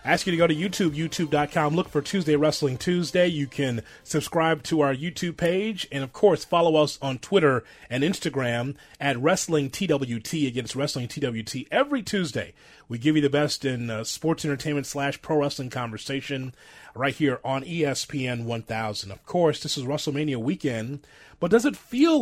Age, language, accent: 30-49, English, American